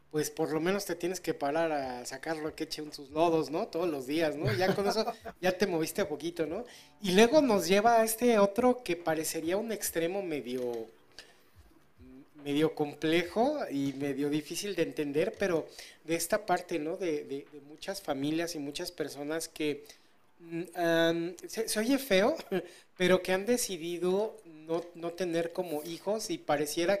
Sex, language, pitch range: male, Spanish, 150-195 Hz